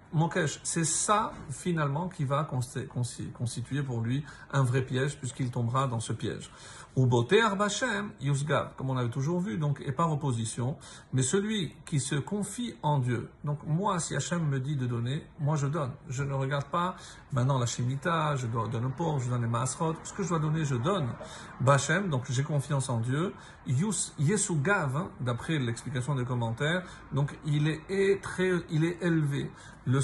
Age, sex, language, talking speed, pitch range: 50-69, male, French, 180 wpm, 130-165 Hz